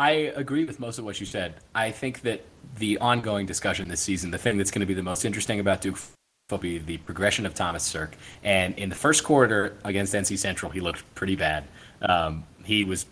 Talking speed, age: 225 wpm, 20-39